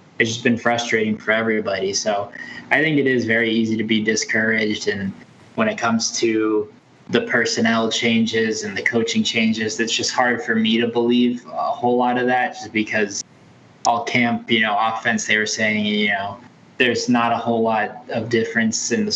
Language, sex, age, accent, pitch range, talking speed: English, male, 20-39, American, 110-120 Hz, 190 wpm